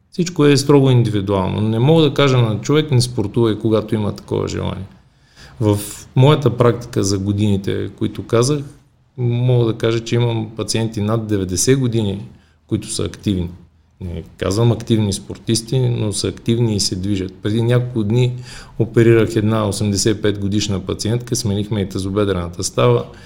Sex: male